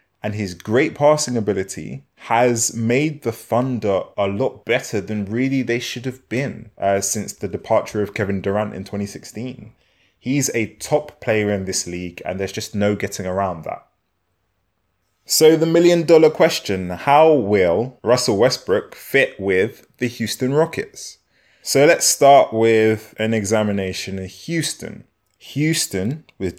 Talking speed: 145 wpm